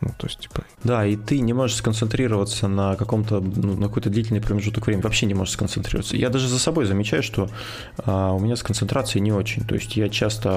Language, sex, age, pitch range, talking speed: Russian, male, 20-39, 100-120 Hz, 220 wpm